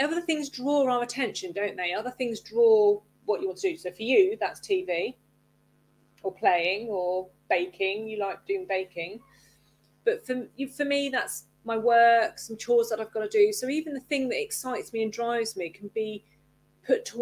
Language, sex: English, female